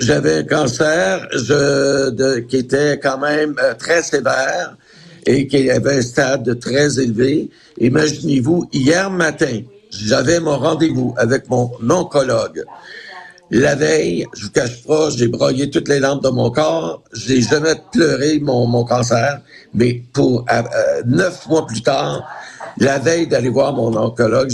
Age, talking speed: 60-79, 150 wpm